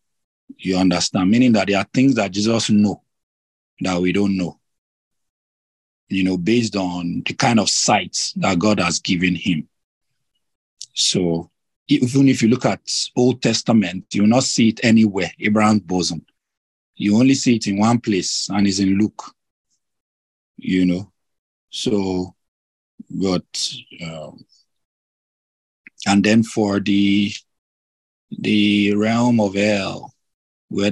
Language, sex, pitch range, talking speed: English, male, 85-105 Hz, 130 wpm